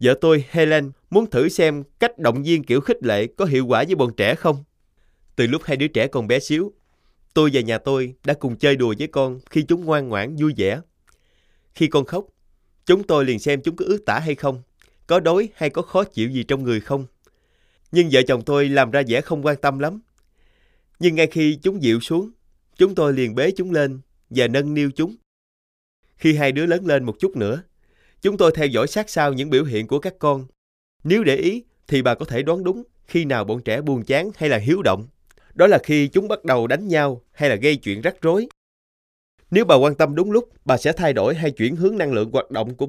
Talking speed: 230 wpm